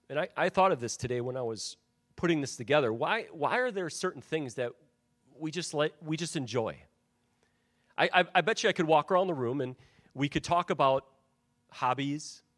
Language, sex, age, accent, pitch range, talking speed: English, male, 40-59, American, 140-185 Hz, 205 wpm